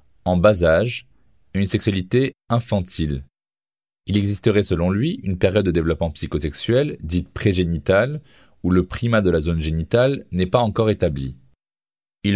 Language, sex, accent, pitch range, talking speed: French, male, French, 85-110 Hz, 145 wpm